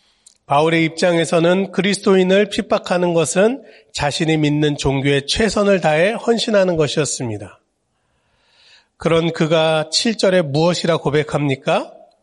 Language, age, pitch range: Korean, 40-59, 140-180 Hz